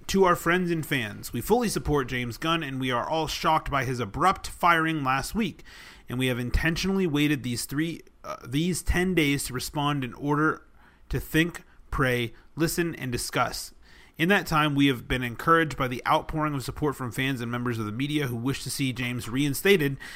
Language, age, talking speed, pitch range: English, 30-49, 200 wpm, 125-150 Hz